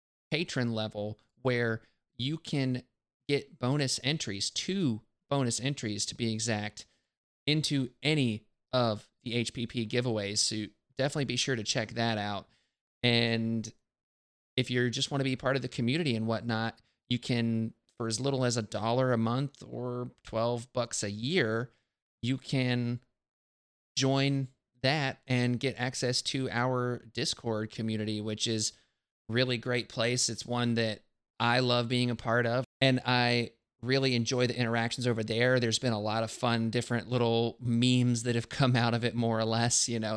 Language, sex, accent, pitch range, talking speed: English, male, American, 110-125 Hz, 165 wpm